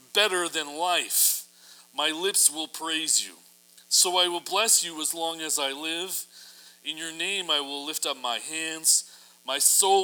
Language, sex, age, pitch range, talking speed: English, male, 40-59, 120-160 Hz, 175 wpm